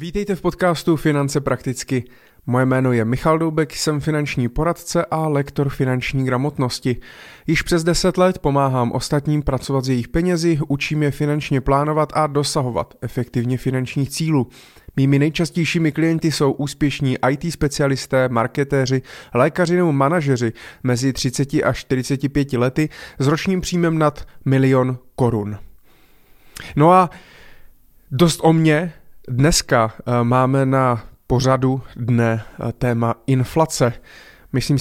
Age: 30-49